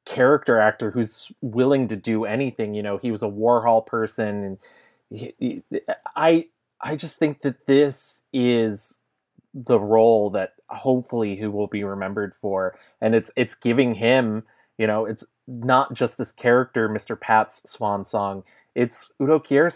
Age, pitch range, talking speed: 30-49, 110-140 Hz, 160 wpm